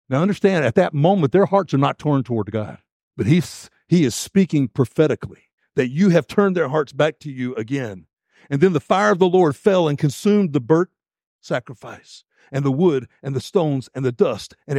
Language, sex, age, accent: English, male, 60-79, American